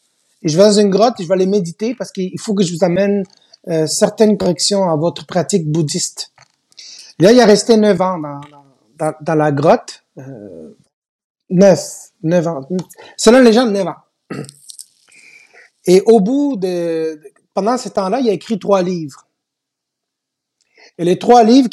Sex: male